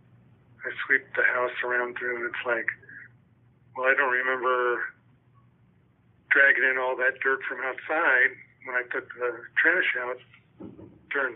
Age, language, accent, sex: 50-69, English, American, male